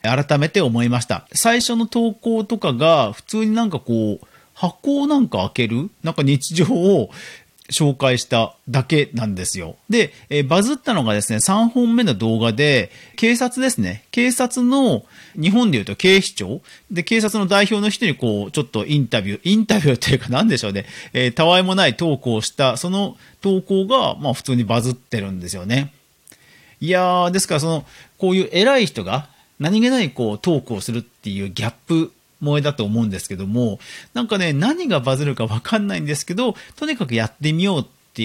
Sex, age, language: male, 40-59, Japanese